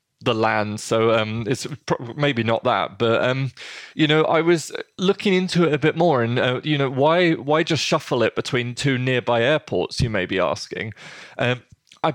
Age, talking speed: 20-39, 200 wpm